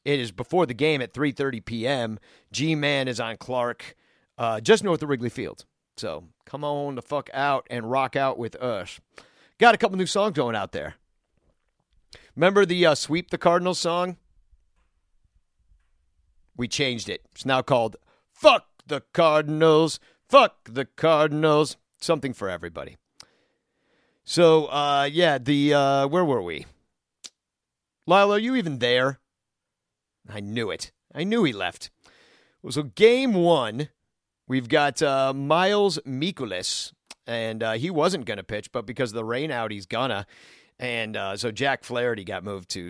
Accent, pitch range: American, 110-155 Hz